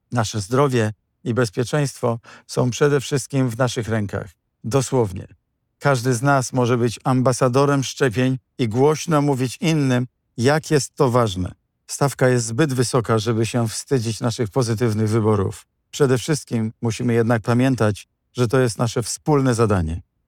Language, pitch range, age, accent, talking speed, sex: Polish, 115-135 Hz, 50-69, native, 140 wpm, male